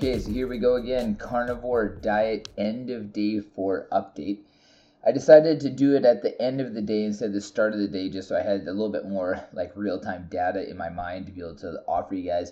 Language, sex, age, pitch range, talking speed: English, male, 20-39, 95-125 Hz, 255 wpm